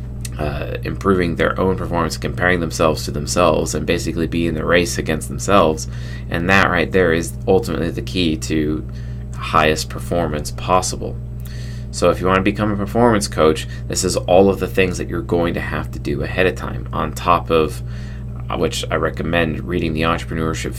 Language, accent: English, American